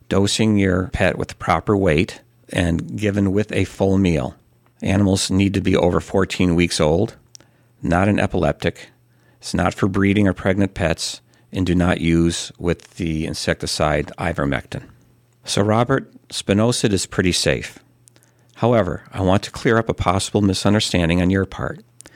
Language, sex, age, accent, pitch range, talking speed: English, male, 50-69, American, 90-110 Hz, 150 wpm